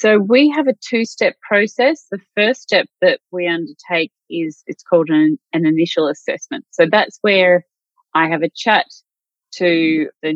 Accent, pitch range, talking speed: Australian, 155-185 Hz, 160 wpm